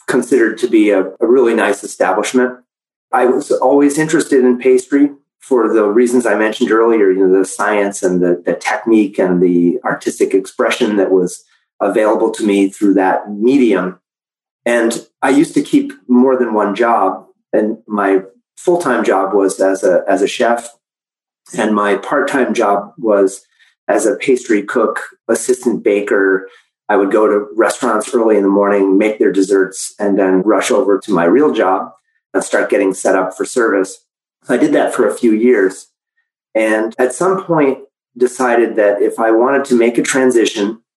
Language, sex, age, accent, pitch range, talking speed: English, male, 30-49, American, 100-145 Hz, 170 wpm